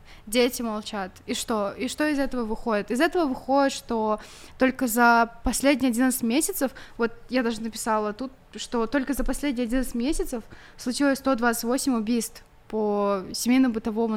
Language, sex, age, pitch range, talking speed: Russian, female, 20-39, 225-265 Hz, 145 wpm